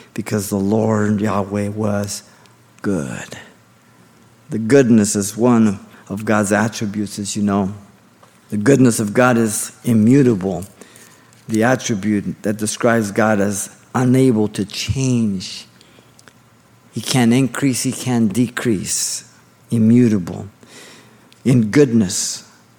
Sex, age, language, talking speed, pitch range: male, 50-69, English, 105 wpm, 105-125 Hz